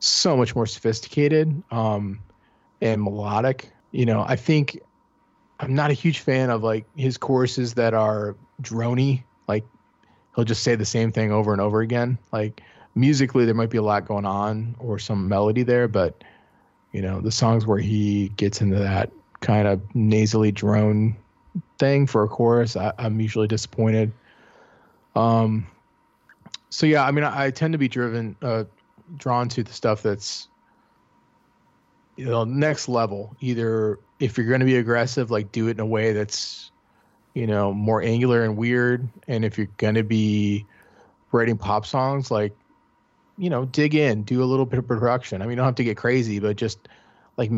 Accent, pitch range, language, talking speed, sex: American, 105-125 Hz, English, 180 wpm, male